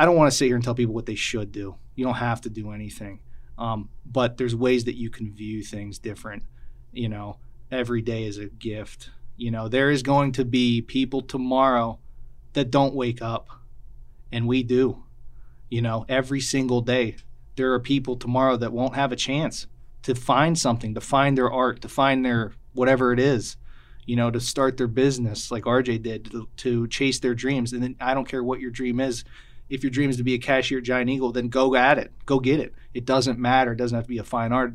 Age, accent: 30-49, American